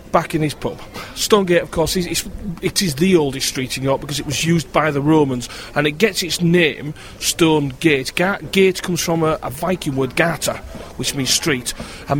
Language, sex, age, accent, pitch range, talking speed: English, male, 40-59, British, 140-185 Hz, 215 wpm